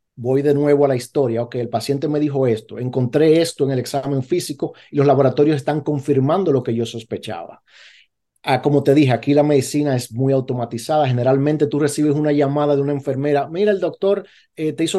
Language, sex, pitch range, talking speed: Spanish, male, 130-160 Hz, 205 wpm